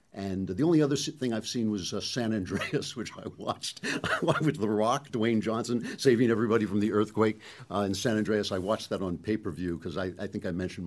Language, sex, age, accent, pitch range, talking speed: English, male, 50-69, American, 95-130 Hz, 215 wpm